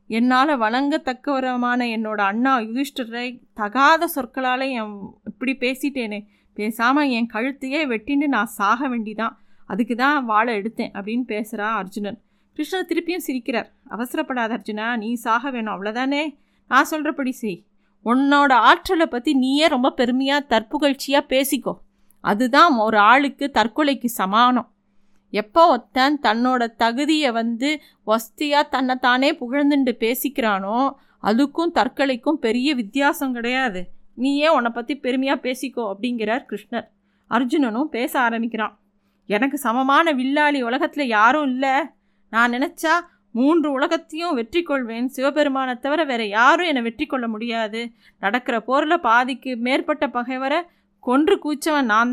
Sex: female